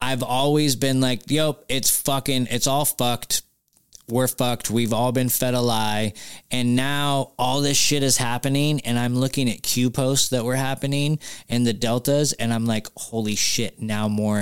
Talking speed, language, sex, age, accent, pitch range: 185 wpm, English, male, 20-39, American, 115-140 Hz